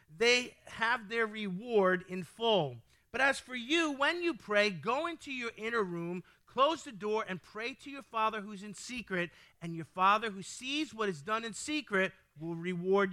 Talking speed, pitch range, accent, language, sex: 185 wpm, 180-255 Hz, American, English, male